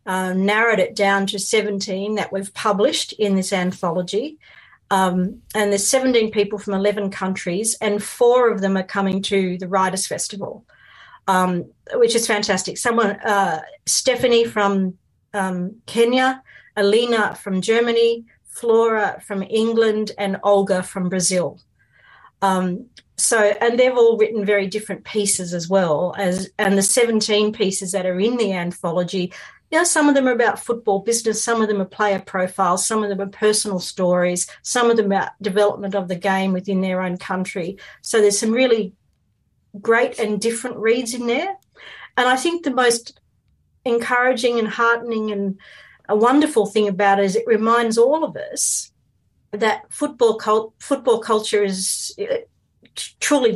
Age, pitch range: 40-59, 195-235 Hz